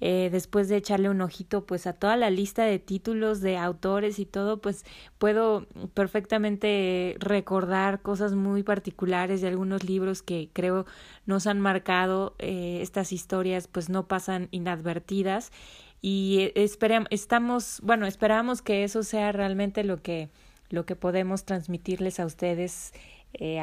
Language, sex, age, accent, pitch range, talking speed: Spanish, female, 20-39, Mexican, 175-205 Hz, 145 wpm